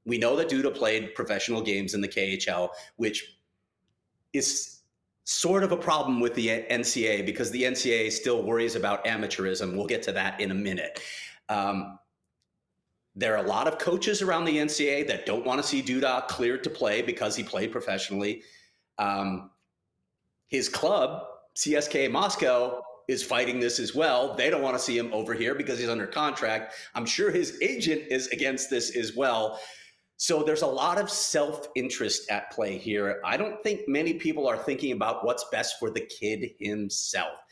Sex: male